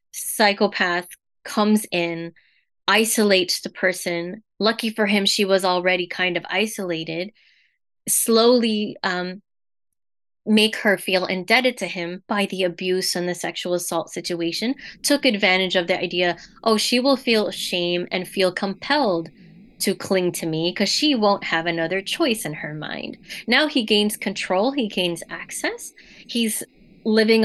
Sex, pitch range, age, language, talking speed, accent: female, 180-225 Hz, 20-39, English, 145 wpm, American